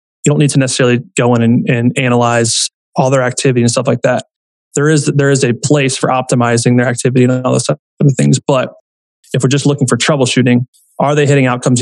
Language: English